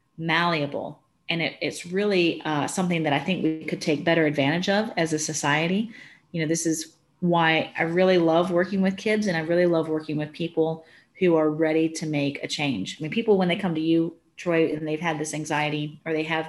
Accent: American